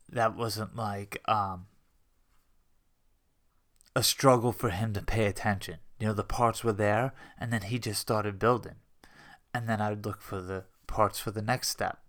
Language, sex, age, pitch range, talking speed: English, male, 20-39, 100-120 Hz, 175 wpm